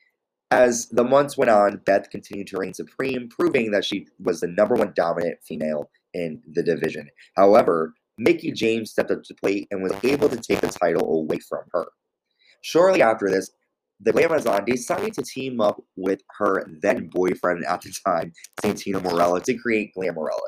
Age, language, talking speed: 20-39, English, 175 wpm